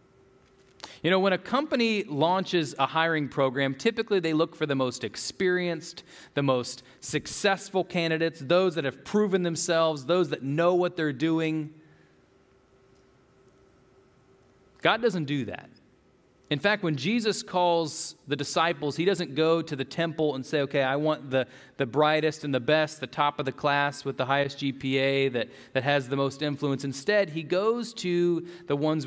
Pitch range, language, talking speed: 145-205 Hz, English, 165 wpm